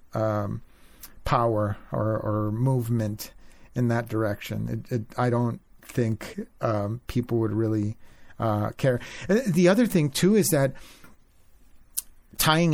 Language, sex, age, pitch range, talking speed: English, male, 50-69, 110-135 Hz, 115 wpm